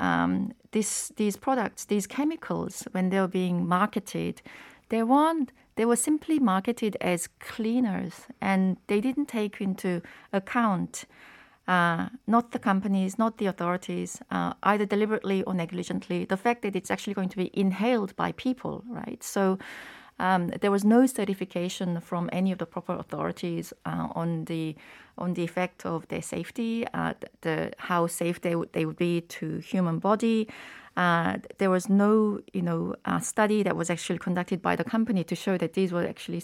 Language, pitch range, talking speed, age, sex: English, 170-215 Hz, 170 wpm, 30-49, female